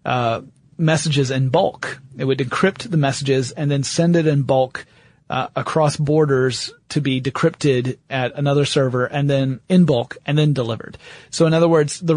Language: English